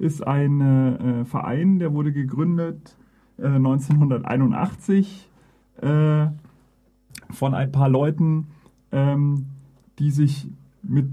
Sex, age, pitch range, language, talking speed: male, 40-59, 130-160 Hz, German, 95 wpm